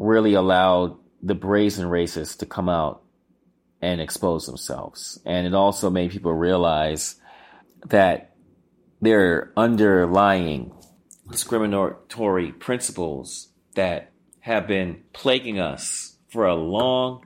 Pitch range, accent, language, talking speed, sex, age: 90-120 Hz, American, English, 110 wpm, male, 30-49